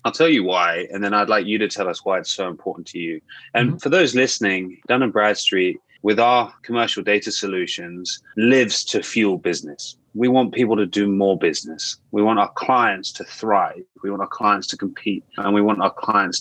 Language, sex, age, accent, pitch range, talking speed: English, male, 20-39, British, 95-115 Hz, 210 wpm